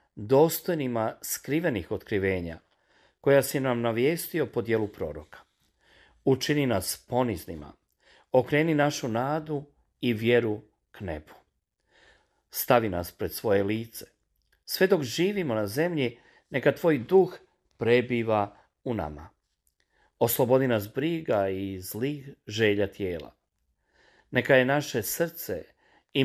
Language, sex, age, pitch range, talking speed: Croatian, male, 40-59, 105-145 Hz, 110 wpm